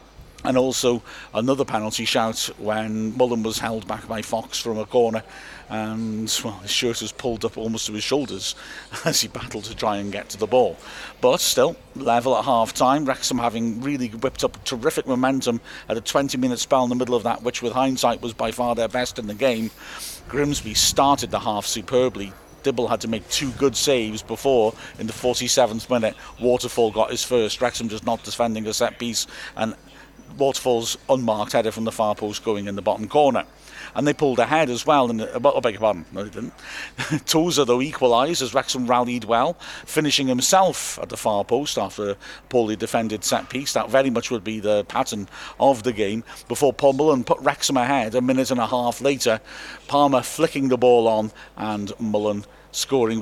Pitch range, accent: 110-130 Hz, British